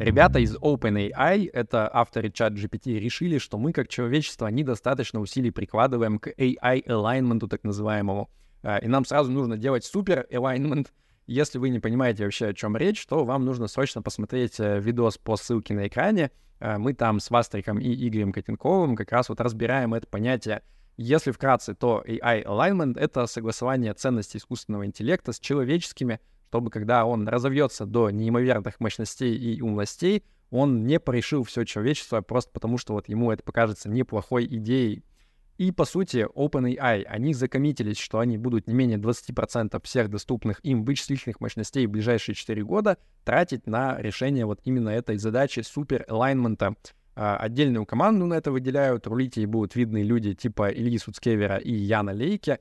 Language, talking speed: Russian, 155 wpm